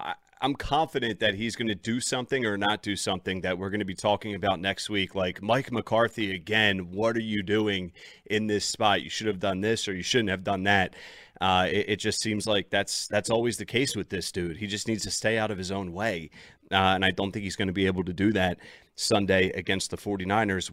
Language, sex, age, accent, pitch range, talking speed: English, male, 30-49, American, 95-110 Hz, 245 wpm